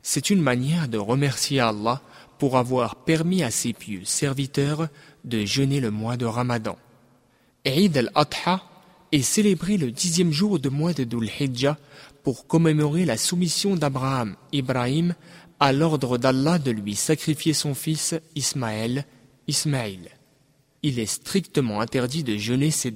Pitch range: 125-160 Hz